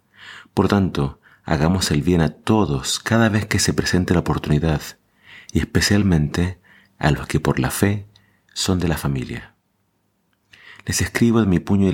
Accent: Argentinian